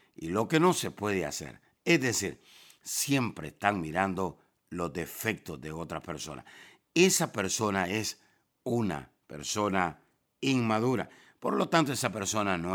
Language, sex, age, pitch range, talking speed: Spanish, male, 60-79, 85-125 Hz, 135 wpm